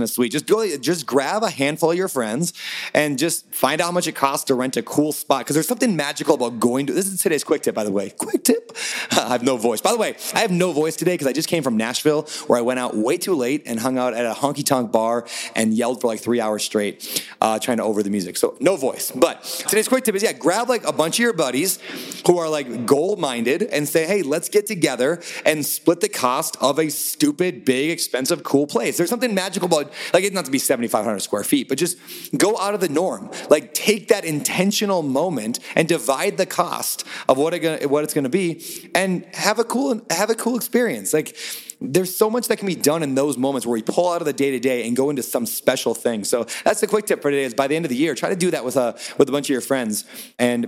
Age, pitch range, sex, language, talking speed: 30-49, 130-185 Hz, male, English, 255 wpm